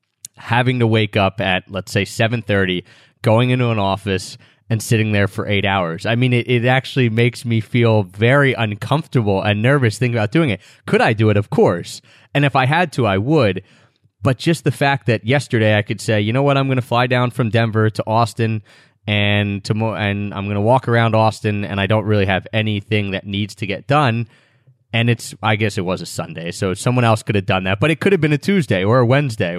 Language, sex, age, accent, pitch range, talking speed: English, male, 20-39, American, 100-125 Hz, 230 wpm